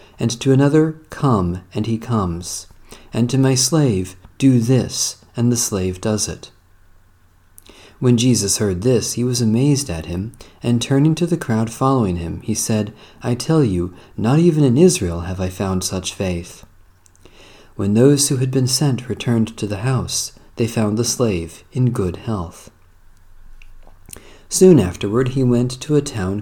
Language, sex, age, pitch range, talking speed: English, male, 40-59, 95-130 Hz, 165 wpm